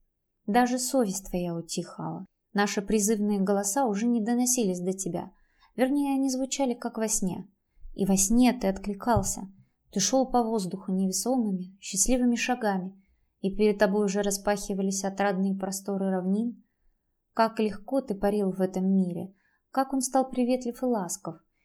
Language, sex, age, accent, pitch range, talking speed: Russian, female, 20-39, native, 195-235 Hz, 140 wpm